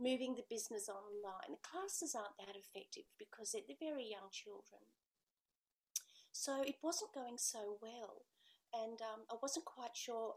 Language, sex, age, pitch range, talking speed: English, female, 40-59, 215-265 Hz, 155 wpm